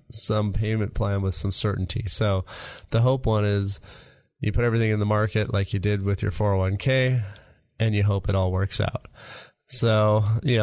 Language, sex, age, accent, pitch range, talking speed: English, male, 30-49, American, 100-115 Hz, 180 wpm